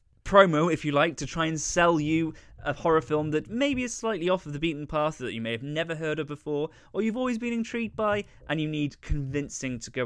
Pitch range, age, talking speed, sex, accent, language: 120-155 Hz, 20-39, 245 wpm, male, British, English